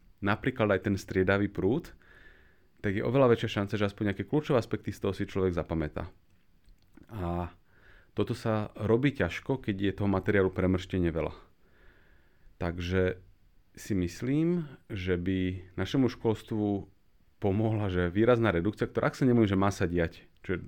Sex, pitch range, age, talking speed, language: male, 90-115 Hz, 30-49, 150 wpm, Slovak